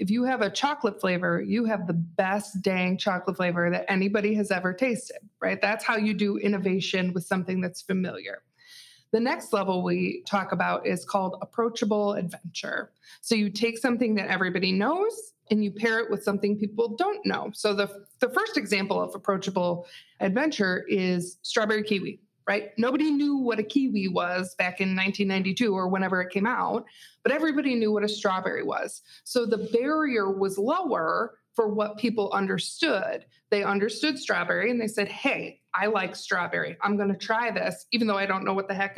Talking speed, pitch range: 185 wpm, 195-230 Hz